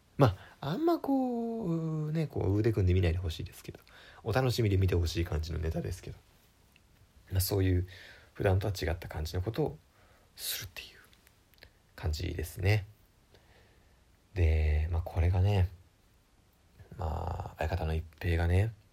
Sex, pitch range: male, 85-110 Hz